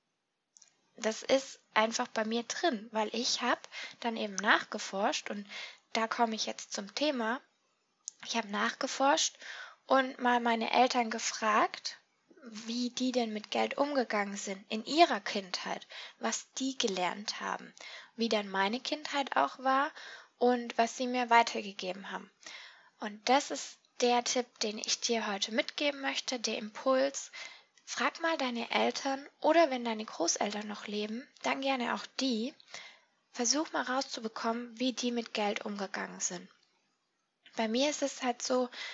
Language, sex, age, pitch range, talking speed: German, female, 10-29, 220-270 Hz, 145 wpm